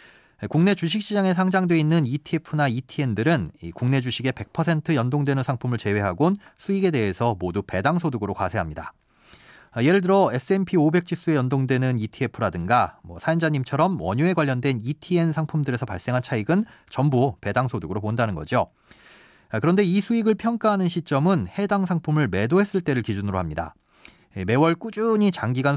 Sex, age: male, 30-49